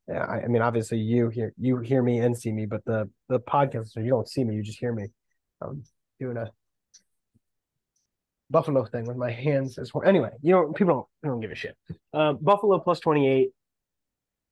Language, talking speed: English, 205 wpm